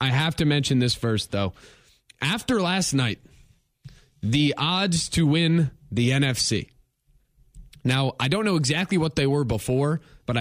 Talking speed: 150 wpm